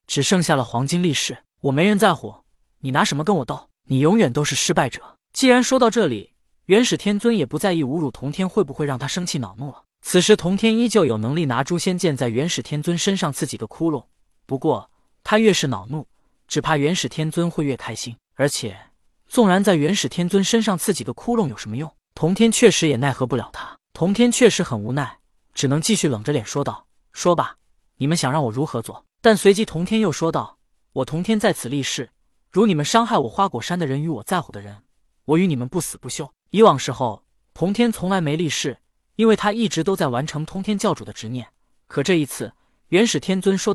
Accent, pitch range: native, 135-200 Hz